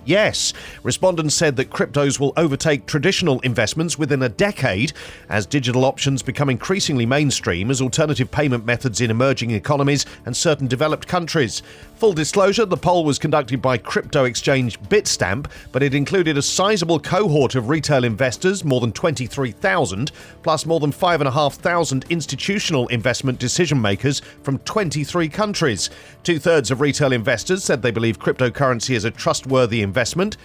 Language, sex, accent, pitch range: English, male, British, 125-160 Hz